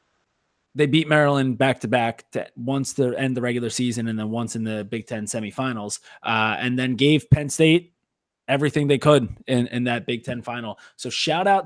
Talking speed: 200 wpm